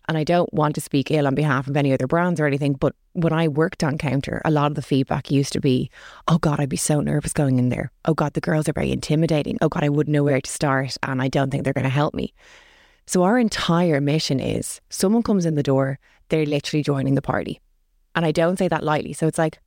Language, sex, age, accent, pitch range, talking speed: English, female, 20-39, Irish, 140-165 Hz, 260 wpm